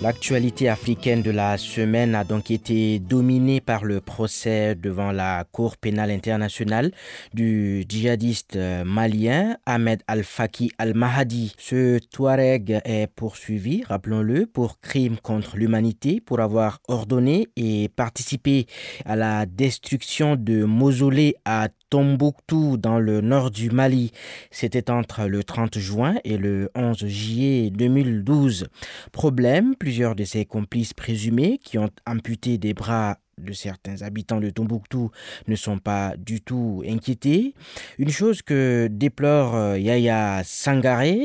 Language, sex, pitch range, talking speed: French, male, 105-130 Hz, 130 wpm